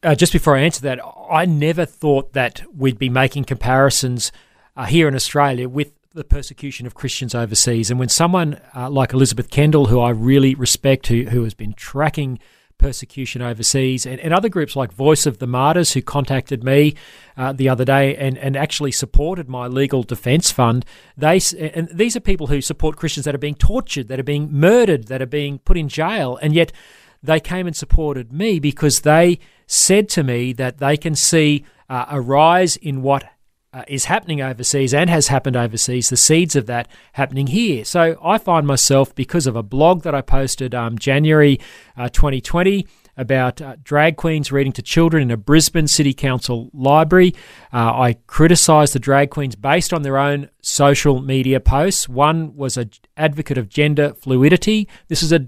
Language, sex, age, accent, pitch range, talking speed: English, male, 40-59, Australian, 130-155 Hz, 190 wpm